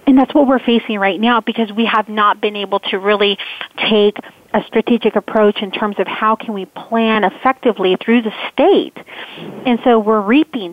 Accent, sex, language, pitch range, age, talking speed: American, female, English, 205-255 Hz, 30-49, 190 wpm